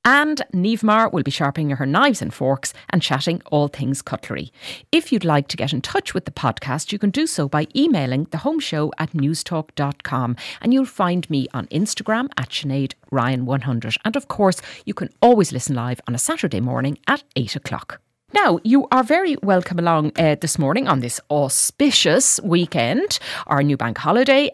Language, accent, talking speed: English, Irish, 185 wpm